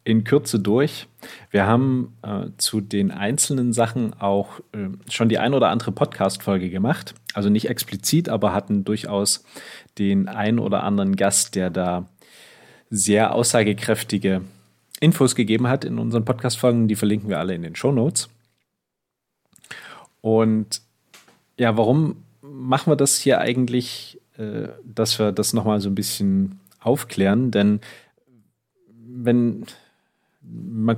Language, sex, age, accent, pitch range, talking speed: German, male, 30-49, German, 100-120 Hz, 130 wpm